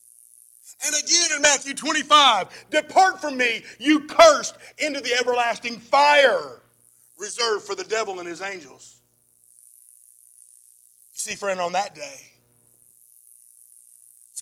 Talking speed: 110 wpm